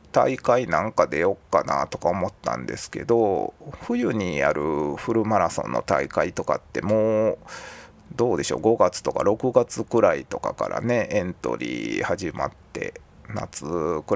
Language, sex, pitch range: Japanese, male, 95-150 Hz